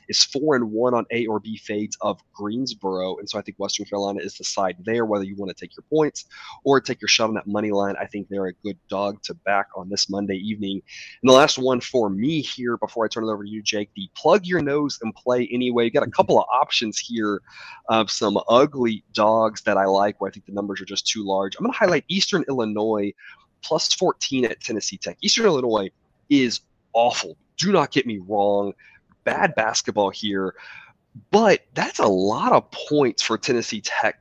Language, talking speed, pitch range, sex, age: English, 220 wpm, 100-140 Hz, male, 20-39